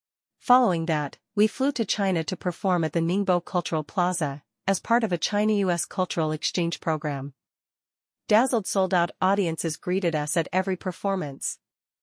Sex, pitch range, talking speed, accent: female, 165-195 Hz, 155 wpm, American